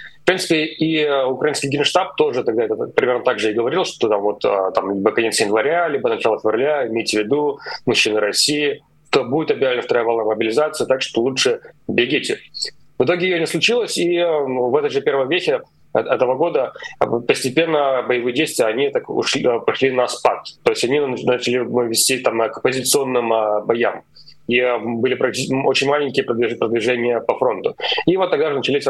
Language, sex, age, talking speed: Russian, male, 30-49, 170 wpm